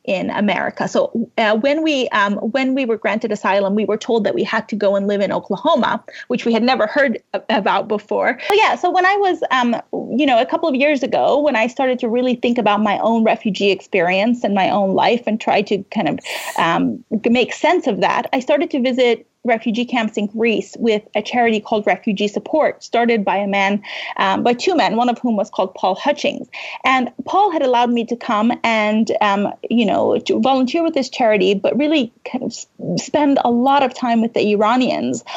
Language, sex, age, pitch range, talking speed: English, female, 30-49, 225-285 Hz, 215 wpm